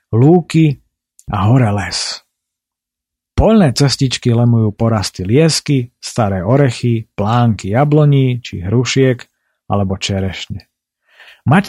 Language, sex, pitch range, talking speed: Slovak, male, 105-140 Hz, 90 wpm